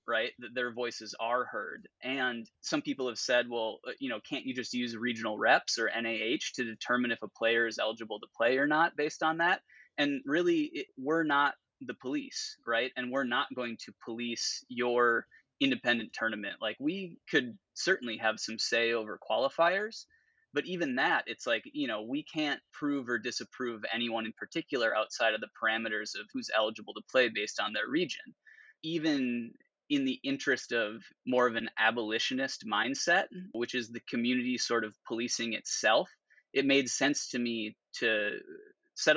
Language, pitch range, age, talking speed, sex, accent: English, 115-185 Hz, 20-39, 175 wpm, male, American